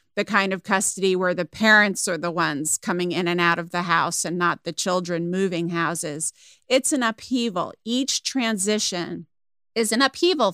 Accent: American